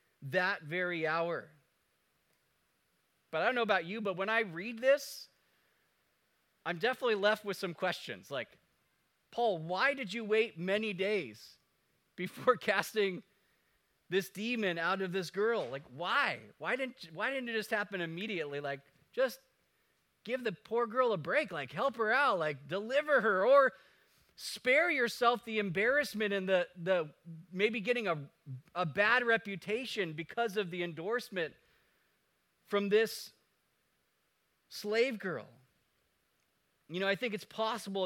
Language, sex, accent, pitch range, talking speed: English, male, American, 180-225 Hz, 140 wpm